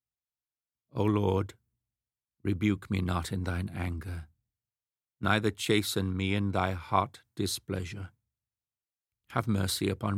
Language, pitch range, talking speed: English, 100-120 Hz, 105 wpm